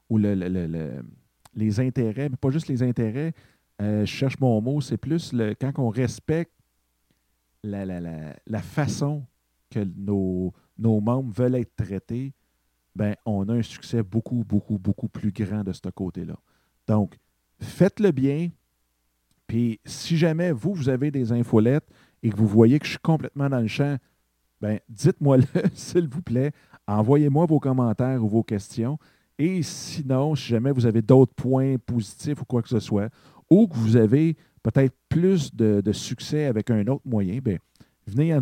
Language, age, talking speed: French, 50-69, 160 wpm